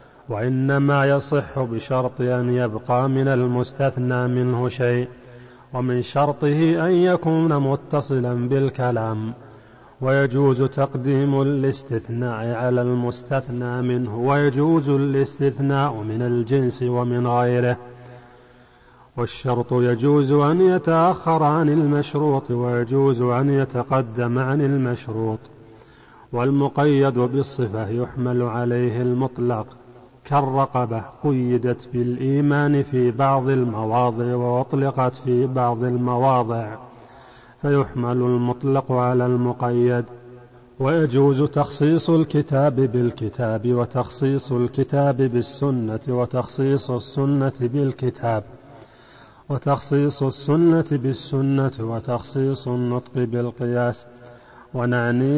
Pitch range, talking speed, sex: 120-140 Hz, 80 wpm, male